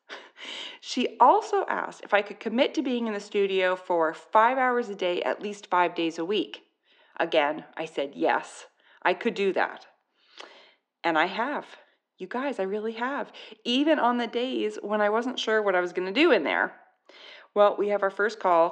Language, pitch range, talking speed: English, 175-245 Hz, 195 wpm